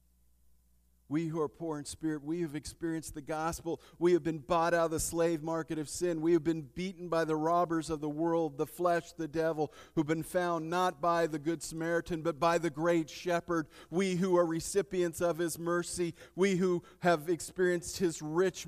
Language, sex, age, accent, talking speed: English, male, 50-69, American, 200 wpm